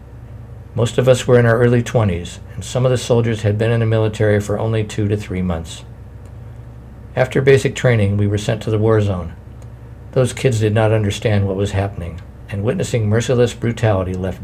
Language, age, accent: English, 60-79, American